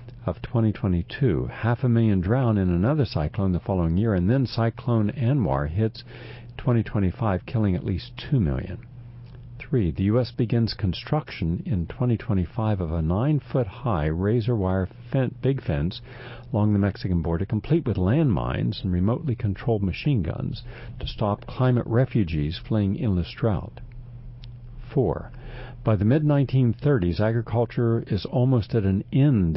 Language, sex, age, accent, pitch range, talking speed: English, male, 60-79, American, 95-125 Hz, 140 wpm